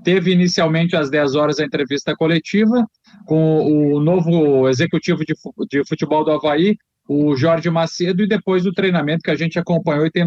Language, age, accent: Portuguese, 40-59, Brazilian